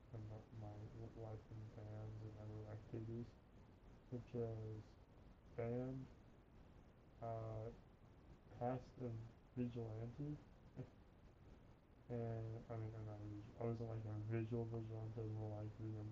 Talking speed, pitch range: 105 wpm, 110-130 Hz